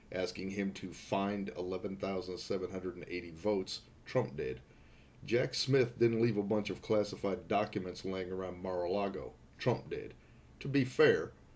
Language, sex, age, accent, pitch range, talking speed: English, male, 40-59, American, 95-115 Hz, 130 wpm